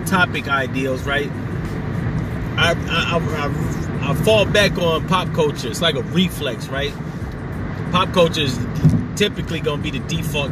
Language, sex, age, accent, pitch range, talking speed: English, male, 30-49, American, 135-160 Hz, 150 wpm